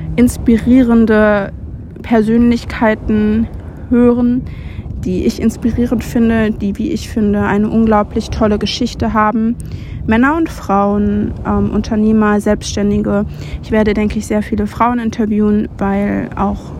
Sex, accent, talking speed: female, German, 115 wpm